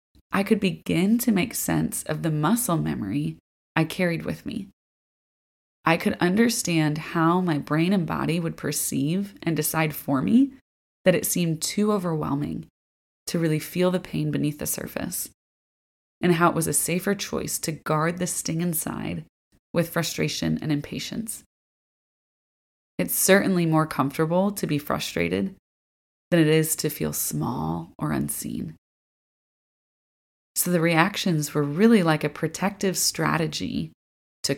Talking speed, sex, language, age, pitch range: 140 wpm, female, English, 20-39, 145-180 Hz